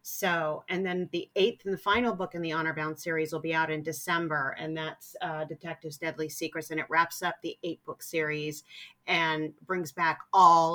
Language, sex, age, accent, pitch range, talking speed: English, female, 40-59, American, 155-170 Hz, 205 wpm